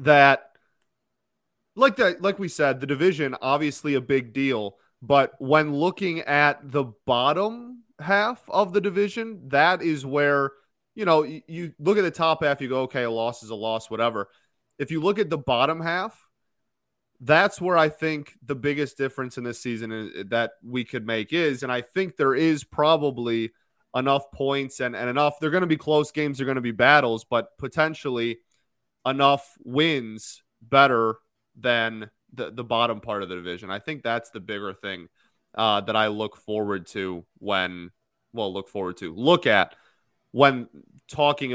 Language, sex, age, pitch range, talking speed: English, male, 20-39, 115-150 Hz, 175 wpm